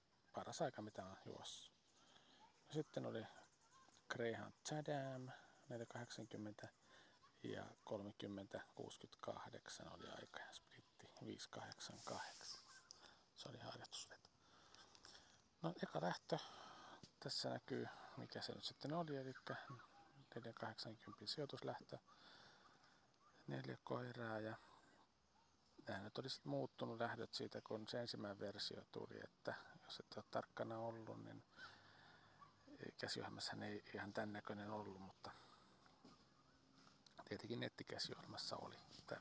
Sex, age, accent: male, 40-59, native